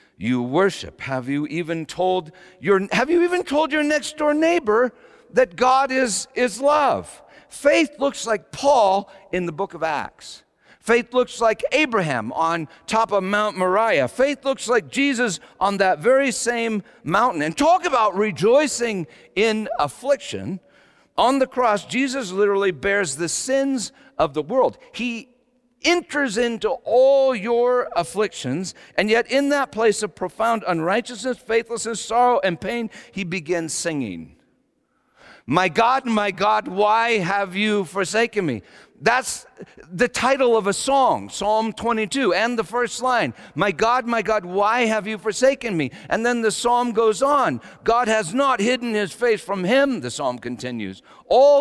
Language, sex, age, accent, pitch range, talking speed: English, male, 50-69, American, 200-260 Hz, 155 wpm